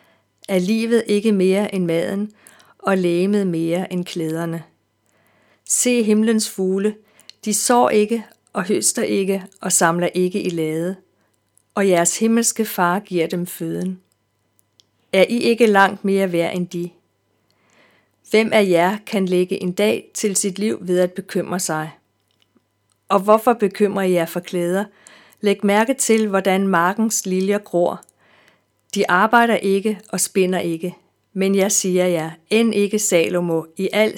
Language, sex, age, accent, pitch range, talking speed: Danish, female, 50-69, native, 175-205 Hz, 145 wpm